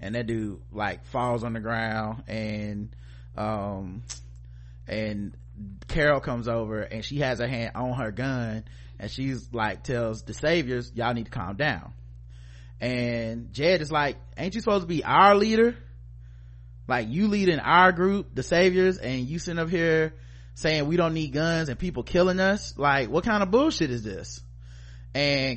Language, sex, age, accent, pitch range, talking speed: English, male, 30-49, American, 110-170 Hz, 170 wpm